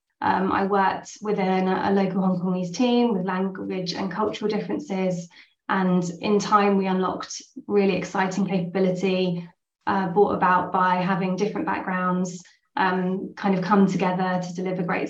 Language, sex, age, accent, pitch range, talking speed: English, female, 20-39, British, 185-205 Hz, 150 wpm